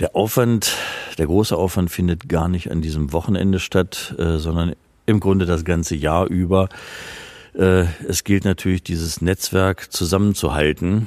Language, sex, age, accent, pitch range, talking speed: German, male, 50-69, German, 85-95 Hz, 135 wpm